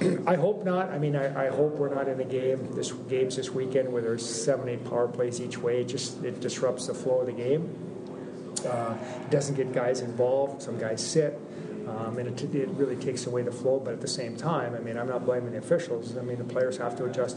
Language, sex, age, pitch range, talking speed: English, male, 40-59, 120-130 Hz, 245 wpm